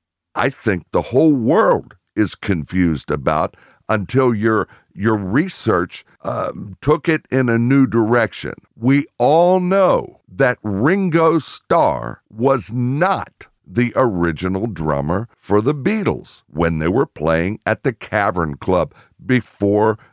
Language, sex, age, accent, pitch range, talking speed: English, male, 60-79, American, 90-135 Hz, 125 wpm